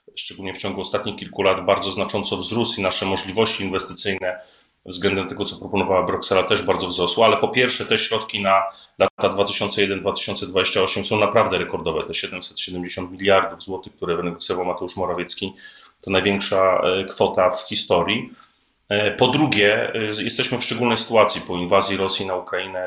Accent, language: native, Polish